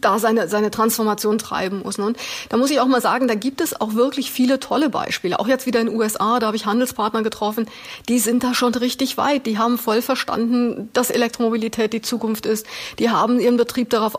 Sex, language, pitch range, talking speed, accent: female, German, 215-250 Hz, 220 wpm, German